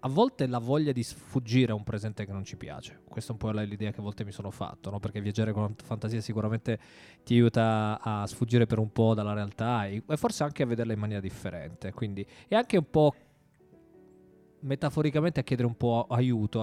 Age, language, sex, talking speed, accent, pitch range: 20-39, Italian, male, 210 wpm, native, 105-130 Hz